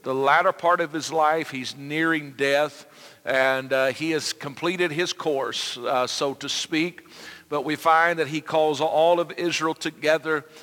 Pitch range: 140-165 Hz